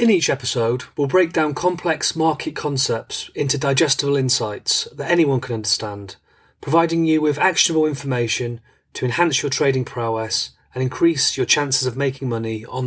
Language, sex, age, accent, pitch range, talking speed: English, male, 30-49, British, 115-155 Hz, 160 wpm